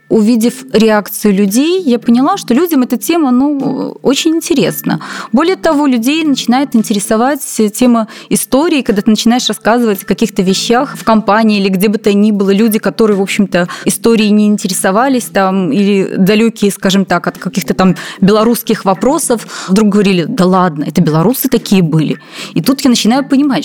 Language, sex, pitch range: Russian, female, 200-260 Hz